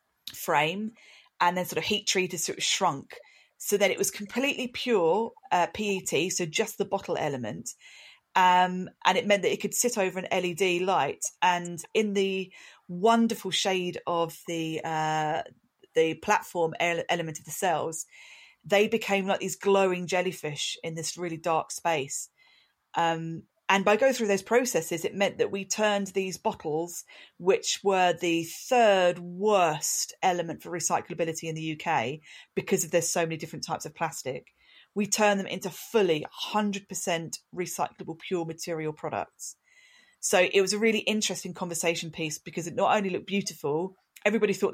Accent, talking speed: British, 160 wpm